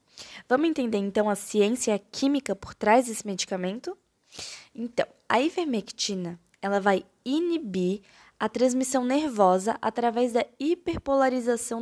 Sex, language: female, Portuguese